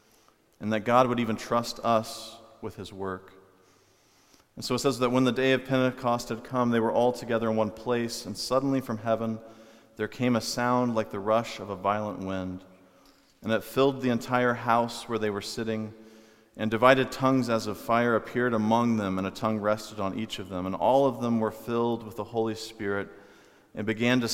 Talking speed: 205 wpm